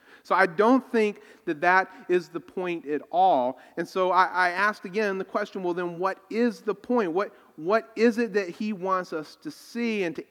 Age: 40-59